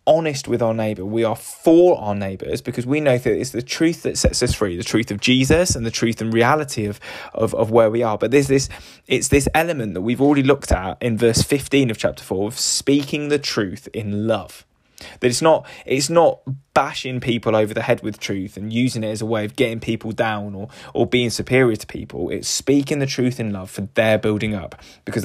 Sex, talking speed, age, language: male, 230 wpm, 10-29, English